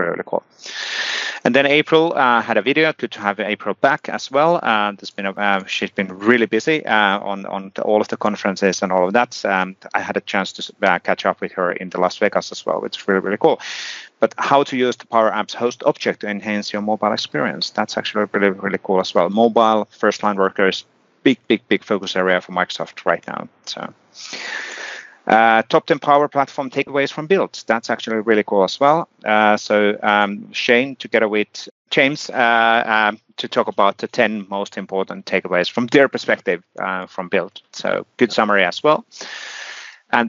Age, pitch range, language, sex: 30-49, 100-130 Hz, English, male